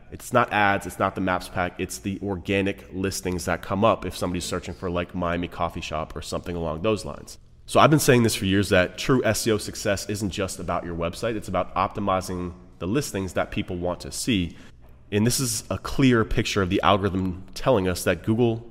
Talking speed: 215 wpm